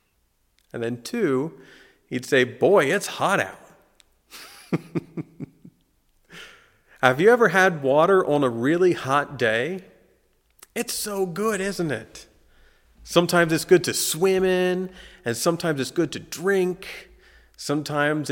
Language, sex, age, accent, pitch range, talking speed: English, male, 40-59, American, 115-180 Hz, 120 wpm